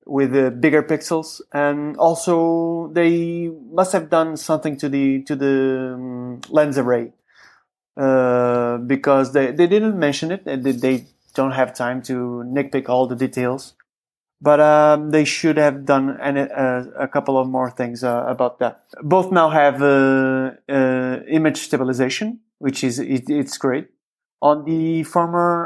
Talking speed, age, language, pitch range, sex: 155 wpm, 30-49, English, 130-160 Hz, male